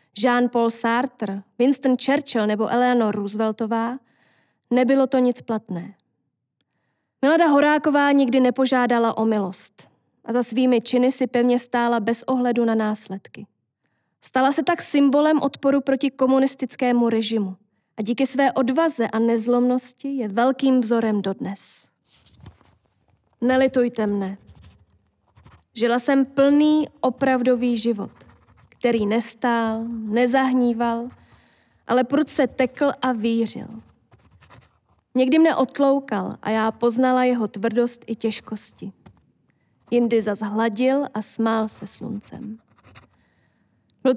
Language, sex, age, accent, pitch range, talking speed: Czech, female, 20-39, native, 215-260 Hz, 110 wpm